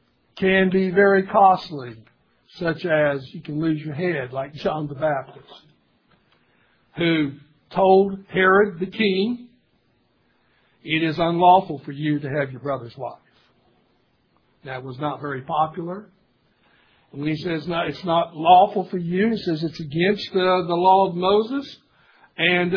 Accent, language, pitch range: American, English, 155-200 Hz